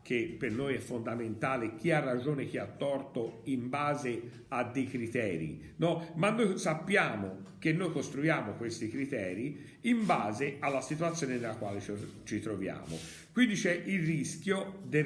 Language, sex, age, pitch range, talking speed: Italian, male, 50-69, 105-150 Hz, 155 wpm